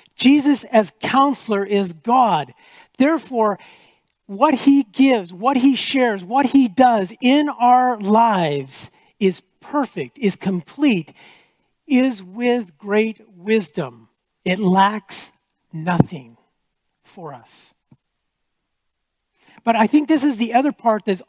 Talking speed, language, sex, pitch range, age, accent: 115 wpm, English, male, 190-260 Hz, 40-59, American